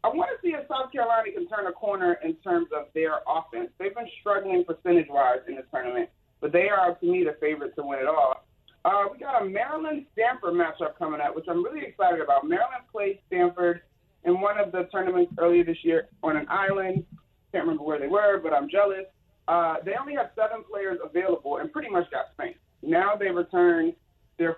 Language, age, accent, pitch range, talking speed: English, 30-49, American, 160-225 Hz, 210 wpm